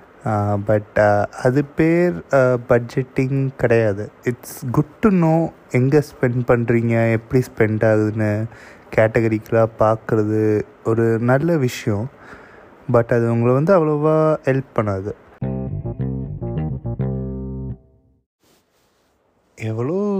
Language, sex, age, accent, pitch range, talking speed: Tamil, male, 20-39, native, 110-135 Hz, 85 wpm